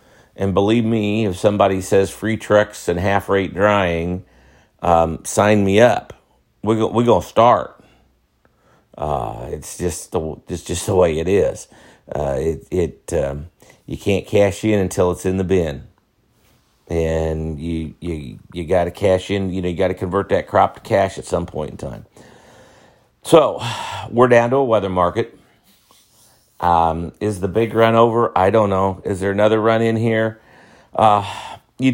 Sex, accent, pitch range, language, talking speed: male, American, 90-110 Hz, English, 160 wpm